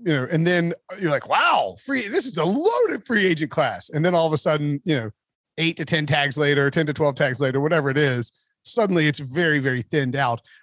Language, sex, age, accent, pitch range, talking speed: English, male, 30-49, American, 135-175 Hz, 235 wpm